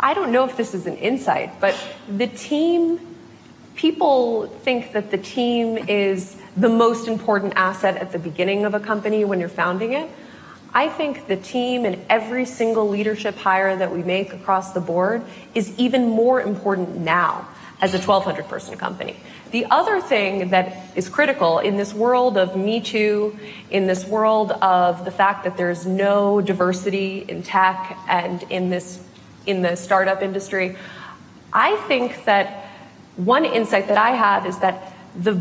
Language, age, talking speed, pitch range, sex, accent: English, 20-39, 165 wpm, 190-235 Hz, female, American